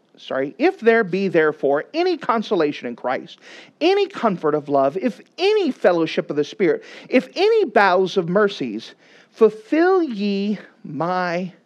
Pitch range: 160-240 Hz